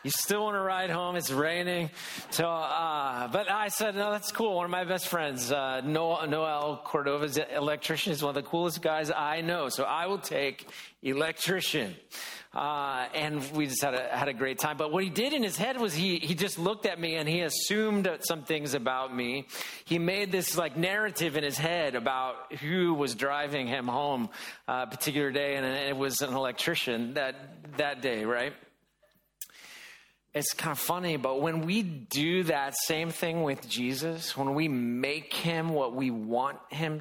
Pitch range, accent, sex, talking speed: 130-170 Hz, American, male, 190 wpm